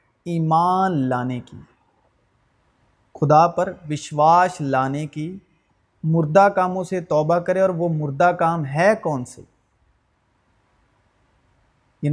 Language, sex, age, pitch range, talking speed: Urdu, male, 30-49, 145-185 Hz, 105 wpm